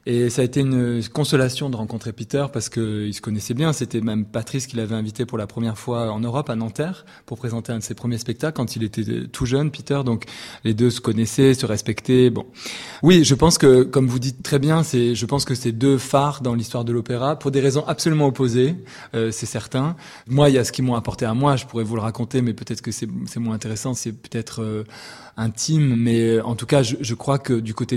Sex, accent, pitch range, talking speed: male, French, 115-130 Hz, 240 wpm